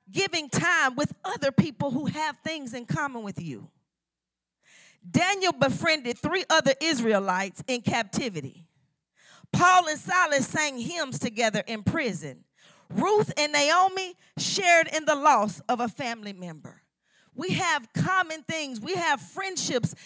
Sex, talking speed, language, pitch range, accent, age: female, 135 wpm, English, 215-315 Hz, American, 40-59